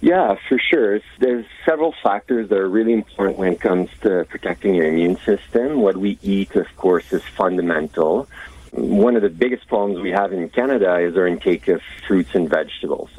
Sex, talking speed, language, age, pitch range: male, 185 wpm, English, 50-69, 80-100 Hz